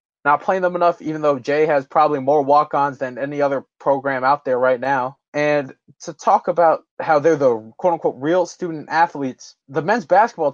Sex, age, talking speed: male, 20-39, 190 wpm